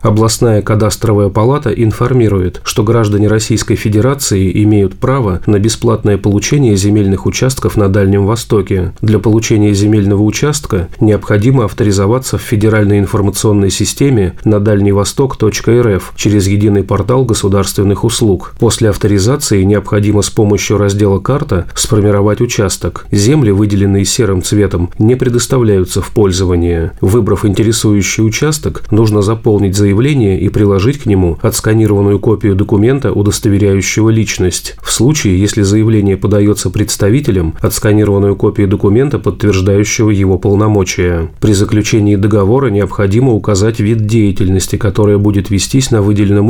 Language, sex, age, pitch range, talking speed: Russian, male, 30-49, 100-115 Hz, 115 wpm